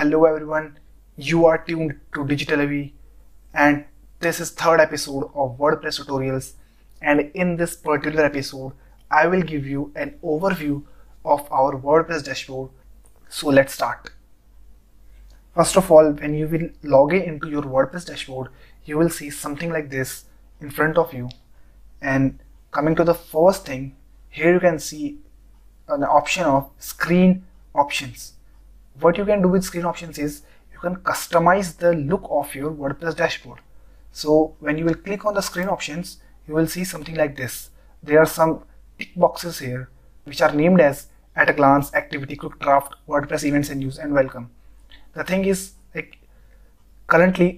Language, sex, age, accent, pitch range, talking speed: English, male, 20-39, Indian, 140-170 Hz, 165 wpm